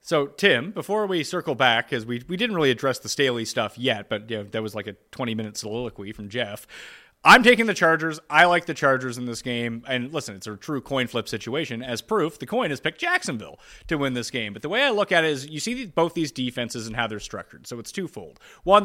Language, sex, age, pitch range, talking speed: English, male, 30-49, 120-175 Hz, 240 wpm